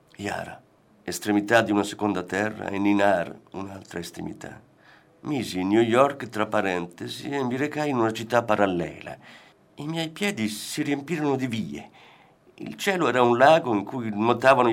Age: 50-69